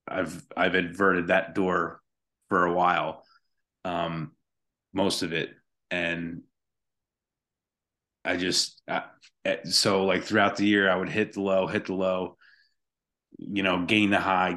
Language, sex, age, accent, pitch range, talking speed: English, male, 30-49, American, 90-100 Hz, 140 wpm